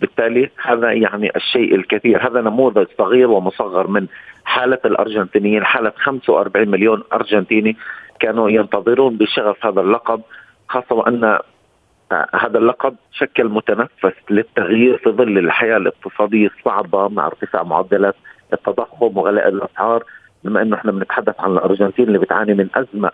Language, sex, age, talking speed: Arabic, male, 40-59, 125 wpm